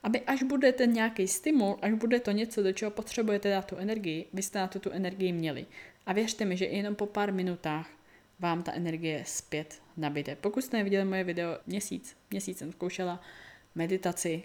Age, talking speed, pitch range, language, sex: 20-39, 185 wpm, 165-205 Hz, Czech, female